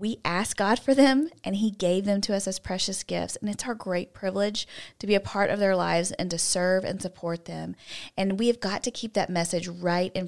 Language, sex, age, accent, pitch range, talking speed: English, female, 30-49, American, 180-215 Hz, 245 wpm